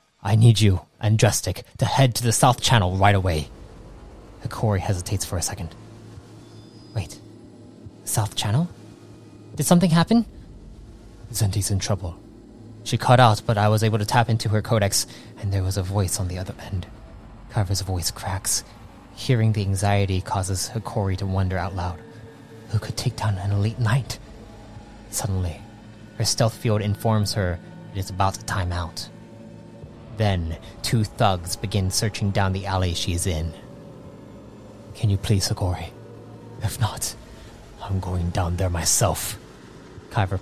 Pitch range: 95-115 Hz